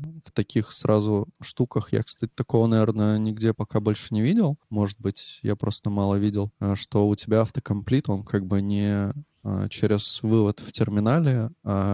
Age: 20-39